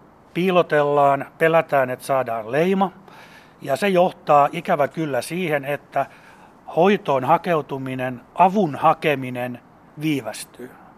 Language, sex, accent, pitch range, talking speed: Finnish, male, native, 130-160 Hz, 95 wpm